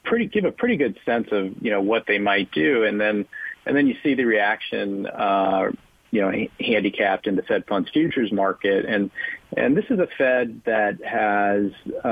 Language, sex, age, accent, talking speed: English, male, 40-59, American, 195 wpm